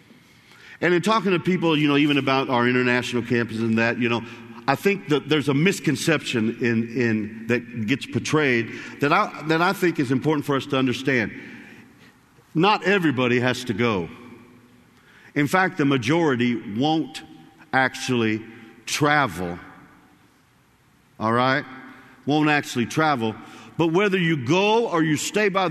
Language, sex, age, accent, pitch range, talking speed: English, male, 50-69, American, 120-155 Hz, 145 wpm